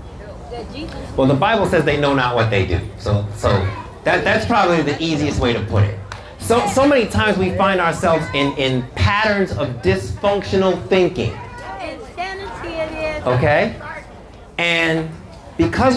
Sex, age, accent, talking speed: male, 30-49, American, 140 wpm